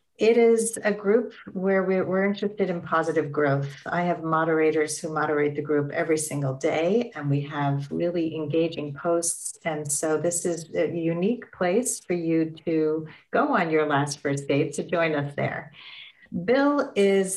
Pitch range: 150-195 Hz